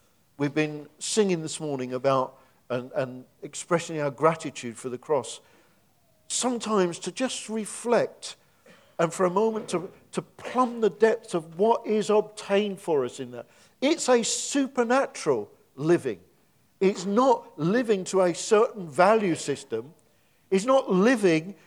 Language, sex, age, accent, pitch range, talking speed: English, male, 50-69, British, 155-230 Hz, 140 wpm